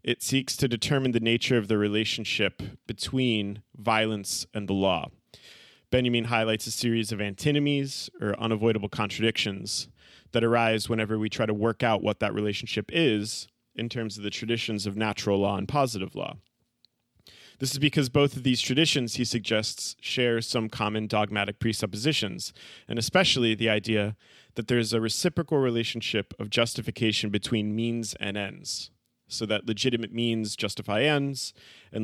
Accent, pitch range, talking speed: American, 105-125 Hz, 155 wpm